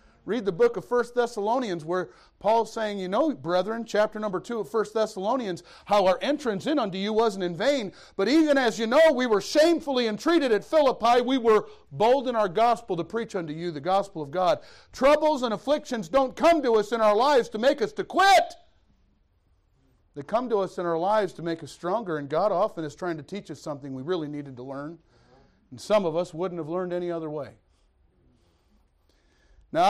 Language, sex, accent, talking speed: English, male, American, 205 wpm